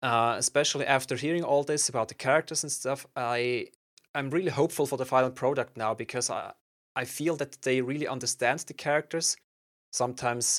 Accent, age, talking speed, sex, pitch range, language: German, 30-49, 175 wpm, male, 120-135 Hz, English